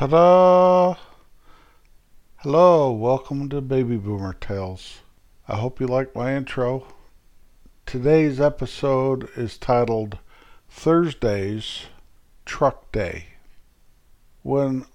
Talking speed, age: 80 wpm, 50-69